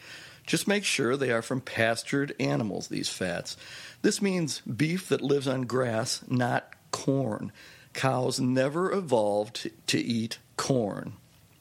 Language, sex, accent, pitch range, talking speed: English, male, American, 115-145 Hz, 130 wpm